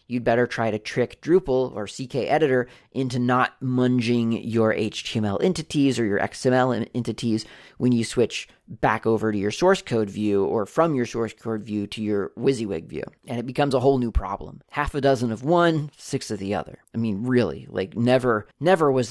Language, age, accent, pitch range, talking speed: English, 30-49, American, 110-135 Hz, 195 wpm